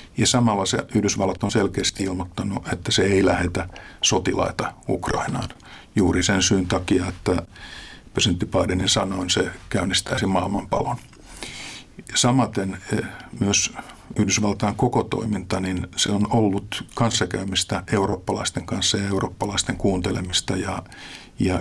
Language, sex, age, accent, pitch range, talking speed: Finnish, male, 50-69, native, 95-110 Hz, 110 wpm